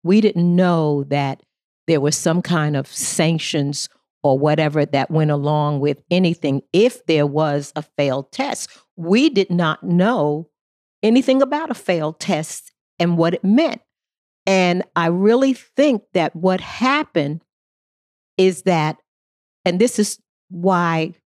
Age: 50-69